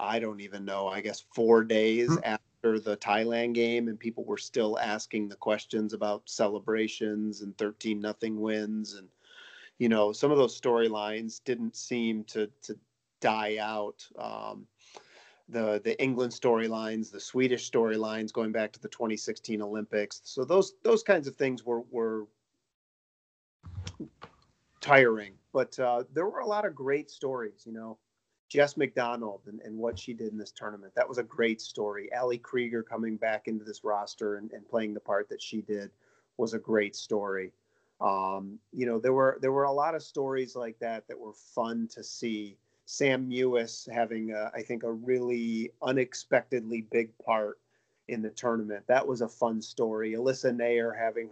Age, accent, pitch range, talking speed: 40-59, American, 105-120 Hz, 170 wpm